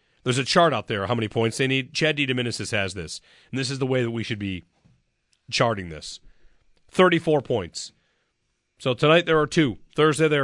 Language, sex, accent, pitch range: English, male, American, 115-155 Hz